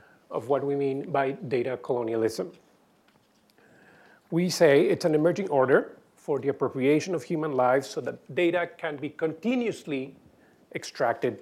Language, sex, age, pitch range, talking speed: English, male, 40-59, 145-210 Hz, 135 wpm